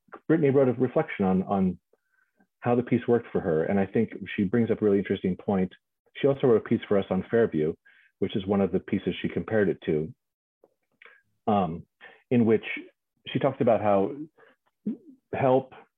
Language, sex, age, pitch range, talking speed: English, male, 40-59, 95-120 Hz, 185 wpm